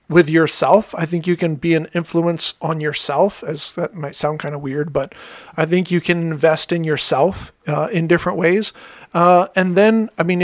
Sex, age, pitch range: male, 40-59, 150-180 Hz